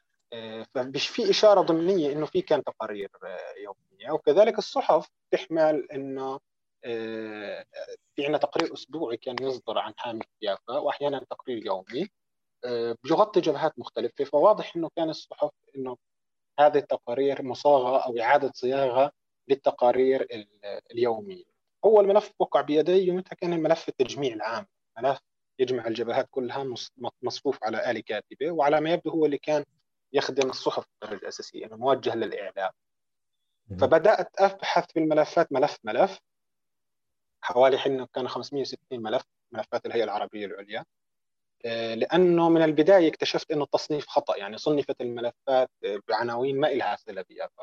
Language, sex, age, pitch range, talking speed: Arabic, male, 30-49, 130-185 Hz, 125 wpm